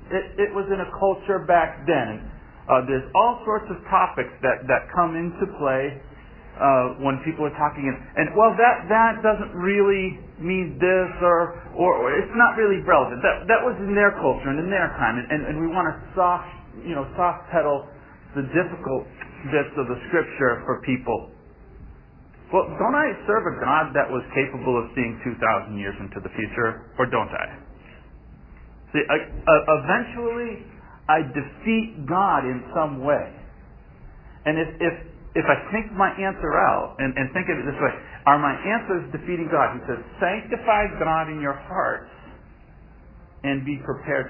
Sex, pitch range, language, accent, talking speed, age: male, 130-185 Hz, English, American, 175 wpm, 40-59